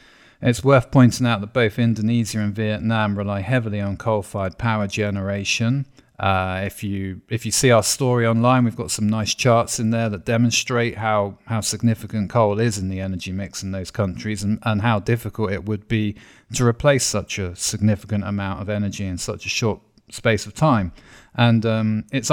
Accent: British